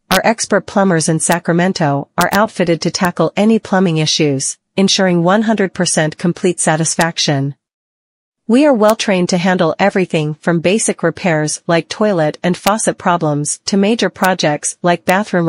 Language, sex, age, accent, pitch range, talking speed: English, female, 40-59, American, 155-200 Hz, 135 wpm